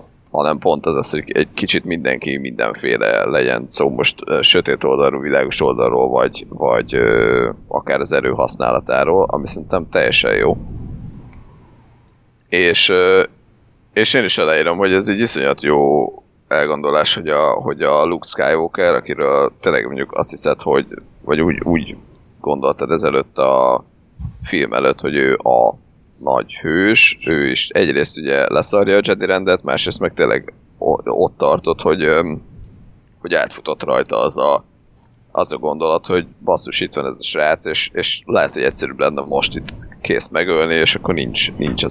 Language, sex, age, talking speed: Hungarian, male, 30-49, 155 wpm